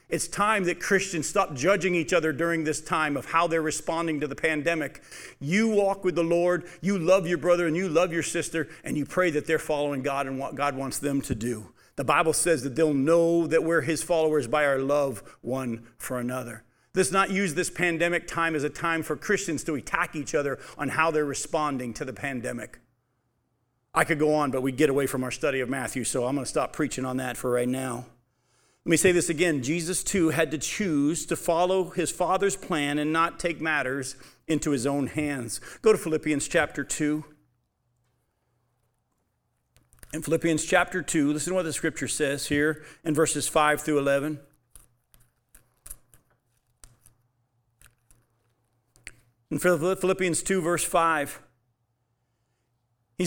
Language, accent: English, American